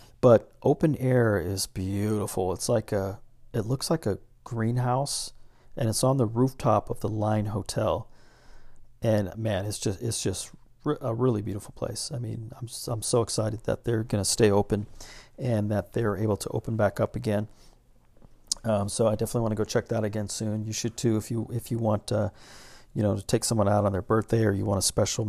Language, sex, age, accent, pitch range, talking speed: English, male, 40-59, American, 105-120 Hz, 205 wpm